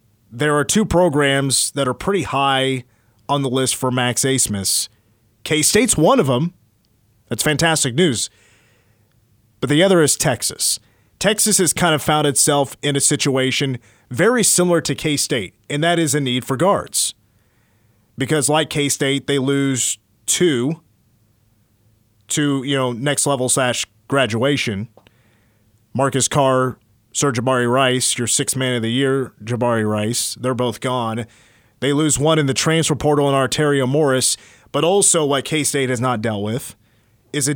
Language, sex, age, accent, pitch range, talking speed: English, male, 30-49, American, 115-150 Hz, 155 wpm